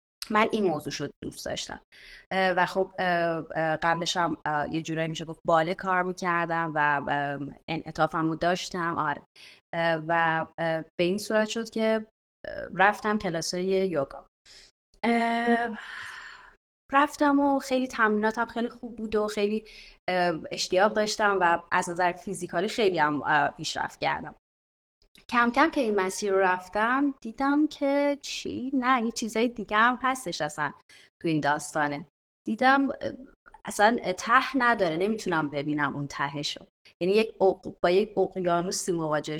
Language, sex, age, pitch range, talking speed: Persian, female, 30-49, 165-220 Hz, 125 wpm